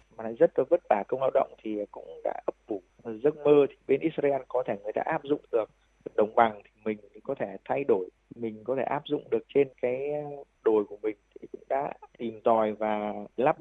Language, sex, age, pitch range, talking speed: Vietnamese, male, 20-39, 110-145 Hz, 230 wpm